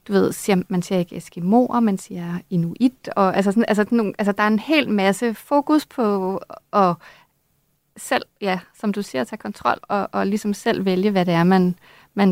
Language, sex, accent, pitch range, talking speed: Danish, female, native, 185-220 Hz, 195 wpm